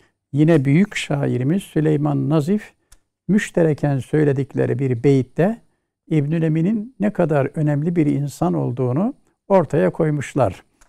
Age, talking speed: 60-79, 100 wpm